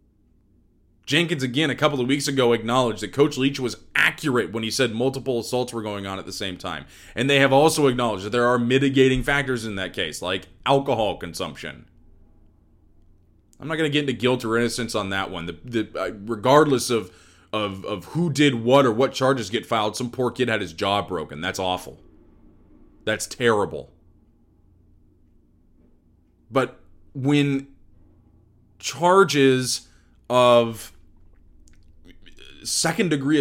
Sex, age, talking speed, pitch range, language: male, 20-39, 145 wpm, 90-140 Hz, English